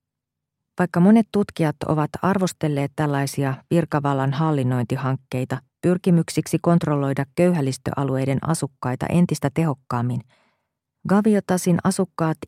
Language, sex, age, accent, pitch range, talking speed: Finnish, female, 40-59, native, 130-165 Hz, 75 wpm